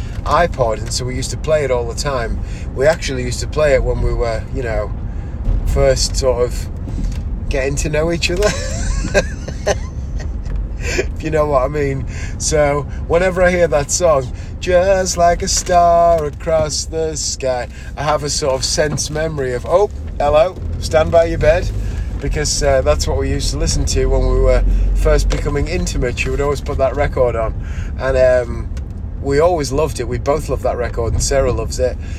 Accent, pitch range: British, 85-140 Hz